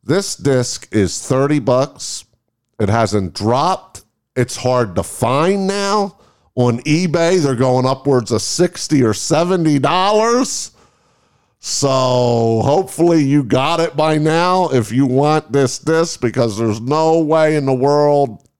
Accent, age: American, 50-69